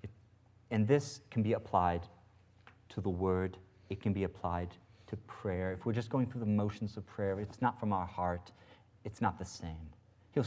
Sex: male